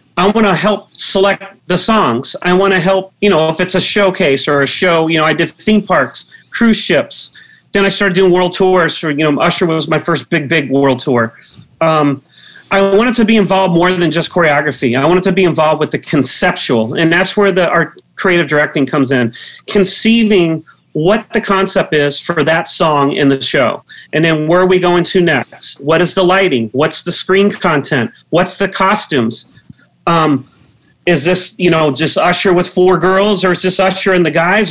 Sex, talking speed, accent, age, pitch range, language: male, 205 wpm, American, 40-59, 150-190 Hz, English